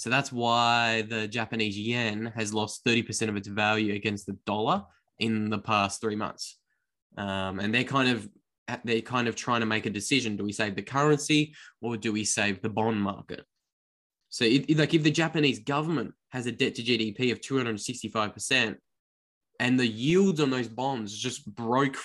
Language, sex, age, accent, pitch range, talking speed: English, male, 10-29, Australian, 110-125 Hz, 200 wpm